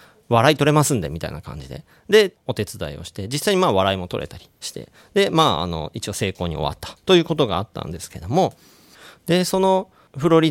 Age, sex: 40-59, male